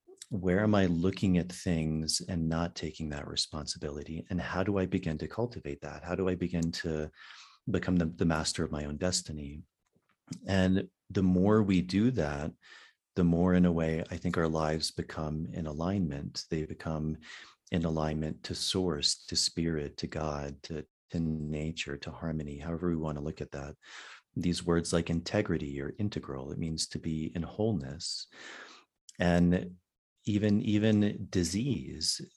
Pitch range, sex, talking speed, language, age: 80-95 Hz, male, 165 wpm, English, 40-59